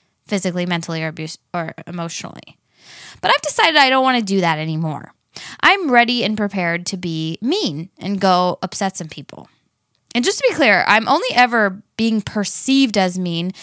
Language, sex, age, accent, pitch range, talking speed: English, female, 20-39, American, 180-240 Hz, 175 wpm